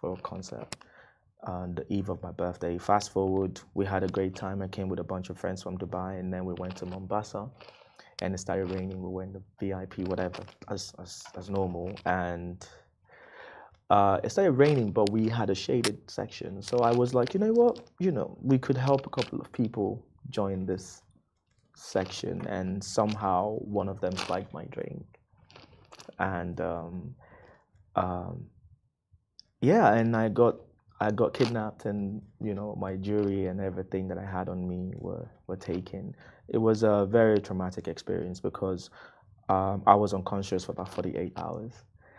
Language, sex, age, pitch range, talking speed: Arabic, male, 20-39, 90-105 Hz, 175 wpm